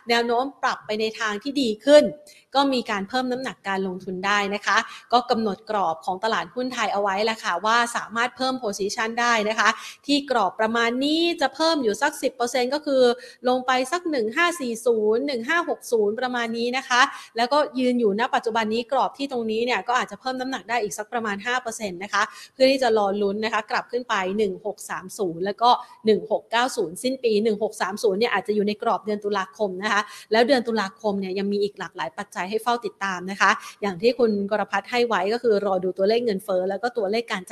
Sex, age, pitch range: female, 30-49, 205-250 Hz